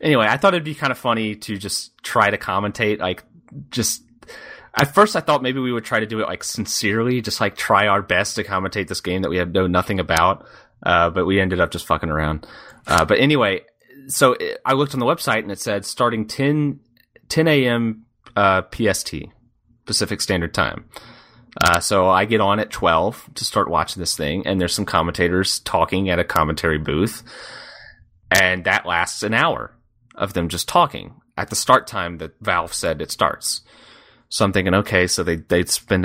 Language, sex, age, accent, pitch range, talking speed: English, male, 30-49, American, 90-120 Hz, 200 wpm